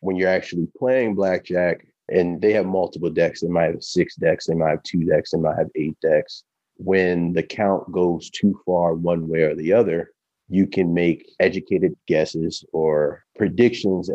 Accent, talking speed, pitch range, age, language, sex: American, 180 wpm, 80-95 Hz, 30-49, English, male